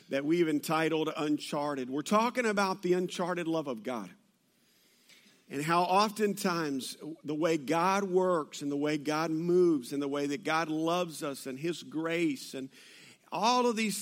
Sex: male